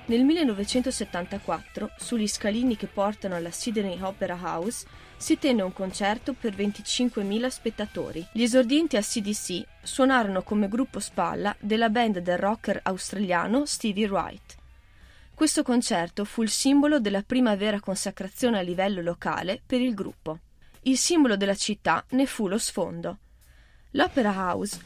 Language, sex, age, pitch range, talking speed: Italian, female, 20-39, 185-250 Hz, 140 wpm